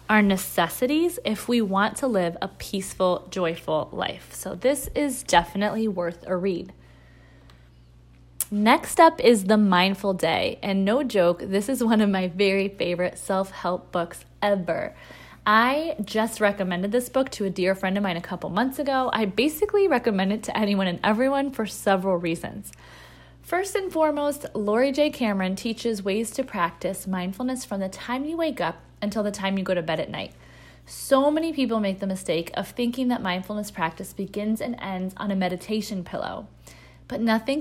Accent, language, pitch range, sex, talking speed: American, English, 185-250 Hz, female, 175 wpm